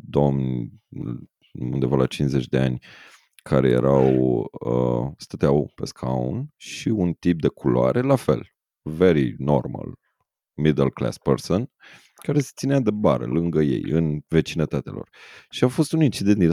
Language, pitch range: Romanian, 70-100 Hz